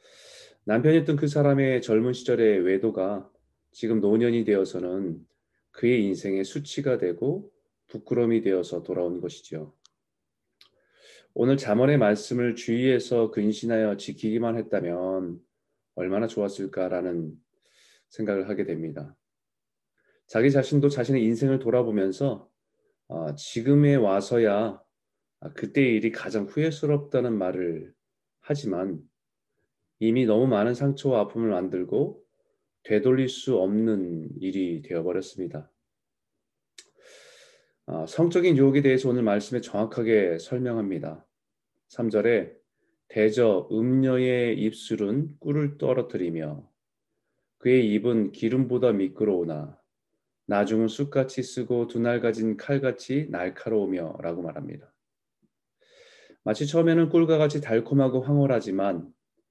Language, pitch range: Korean, 100-140 Hz